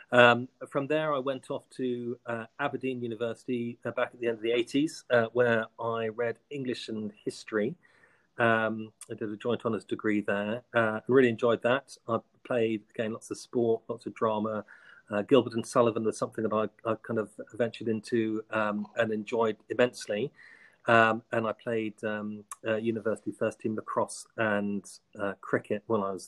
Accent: British